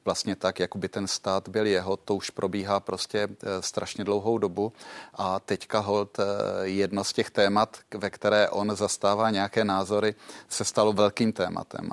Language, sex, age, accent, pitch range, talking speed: Czech, male, 30-49, native, 100-110 Hz, 175 wpm